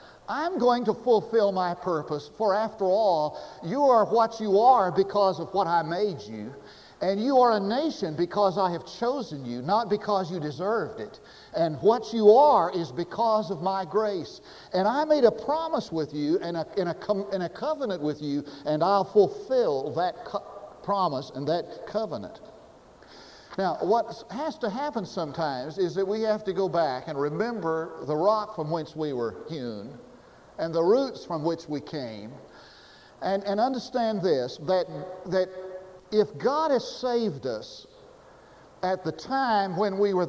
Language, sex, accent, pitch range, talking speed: English, male, American, 170-235 Hz, 170 wpm